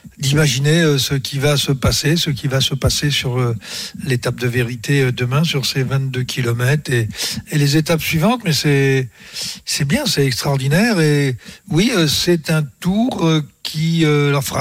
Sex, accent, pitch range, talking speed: male, French, 135-165 Hz, 180 wpm